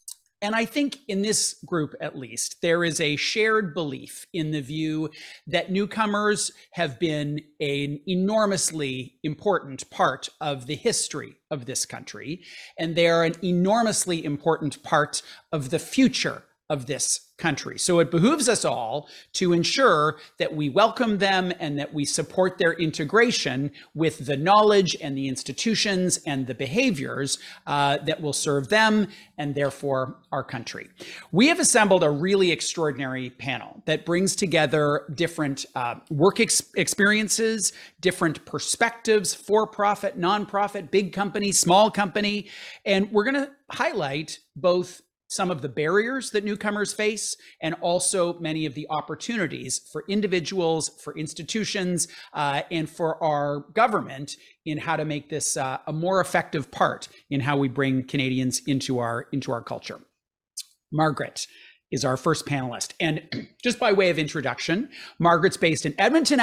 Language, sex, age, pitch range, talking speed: English, male, 40-59, 145-200 Hz, 150 wpm